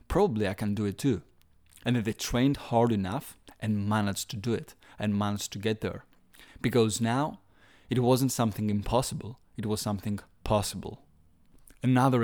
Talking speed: 155 wpm